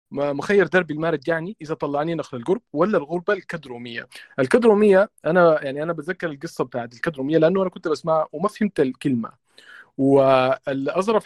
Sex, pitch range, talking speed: male, 130-175 Hz, 150 wpm